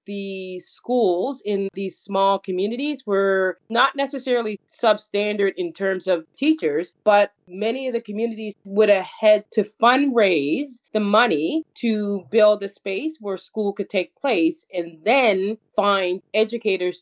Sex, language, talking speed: female, English, 140 wpm